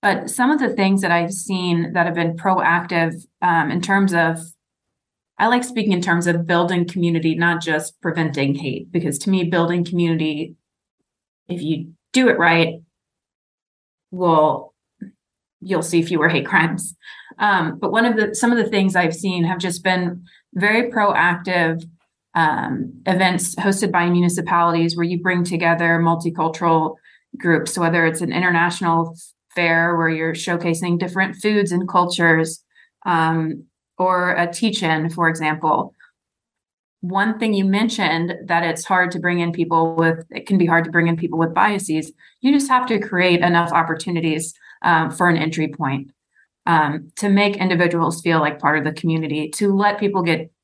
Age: 30-49